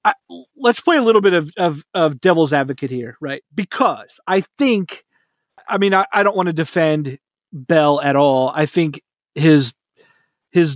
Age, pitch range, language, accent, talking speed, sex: 30-49, 150-200 Hz, English, American, 175 wpm, male